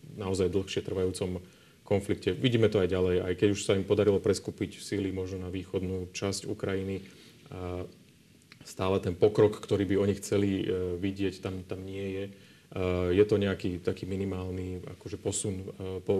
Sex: male